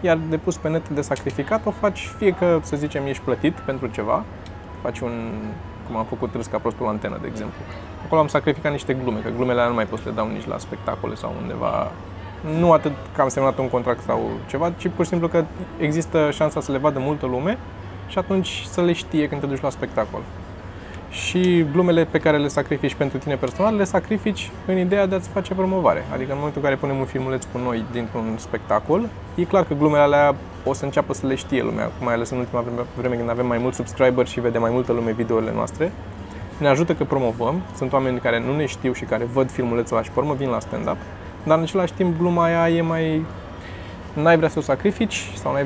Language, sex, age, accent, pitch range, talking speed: Romanian, male, 20-39, native, 115-160 Hz, 225 wpm